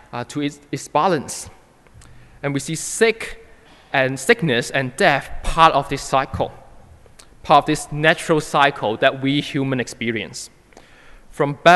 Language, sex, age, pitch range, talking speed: English, male, 20-39, 130-165 Hz, 130 wpm